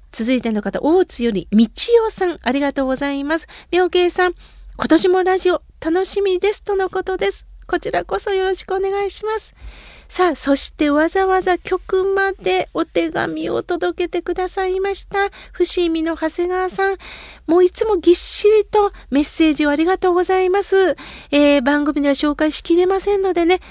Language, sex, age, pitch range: Japanese, female, 40-59, 270-370 Hz